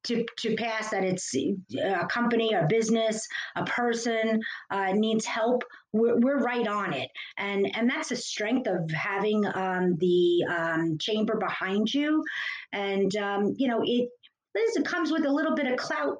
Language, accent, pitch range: English, American, 190-245 Hz